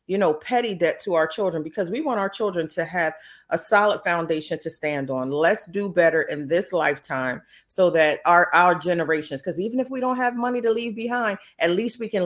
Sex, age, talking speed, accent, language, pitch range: female, 40-59, 220 wpm, American, English, 165-215 Hz